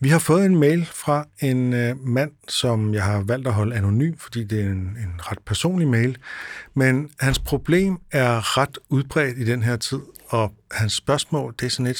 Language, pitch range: Danish, 110-135 Hz